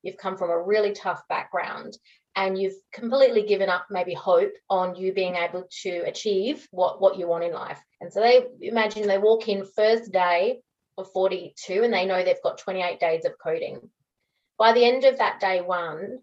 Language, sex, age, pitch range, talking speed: English, female, 30-49, 180-225 Hz, 195 wpm